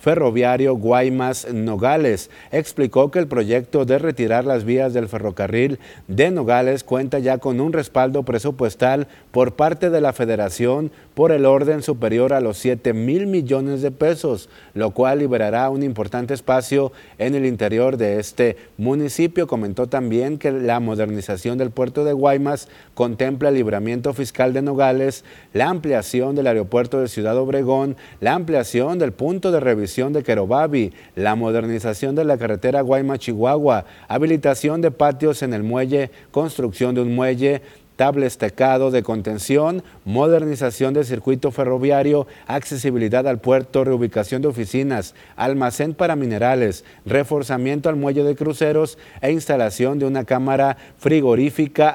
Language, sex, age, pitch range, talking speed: Spanish, male, 50-69, 120-145 Hz, 140 wpm